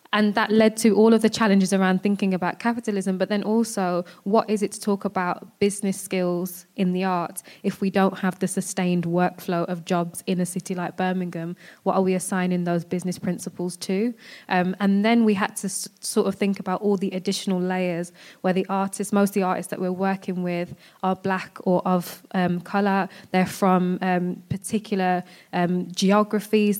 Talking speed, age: 195 wpm, 20-39